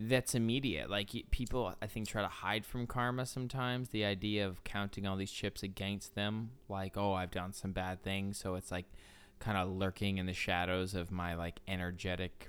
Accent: American